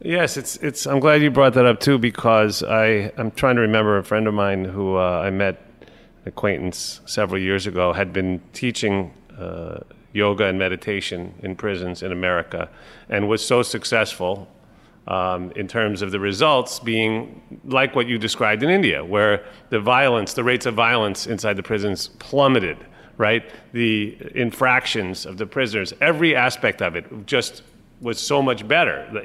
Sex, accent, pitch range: male, American, 100-120 Hz